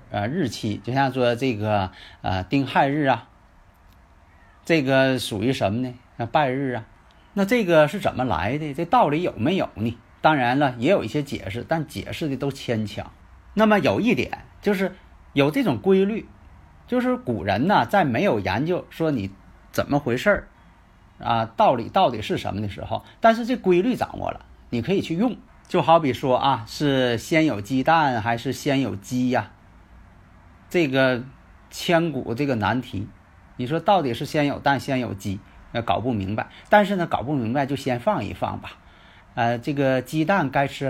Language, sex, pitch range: Chinese, male, 100-150 Hz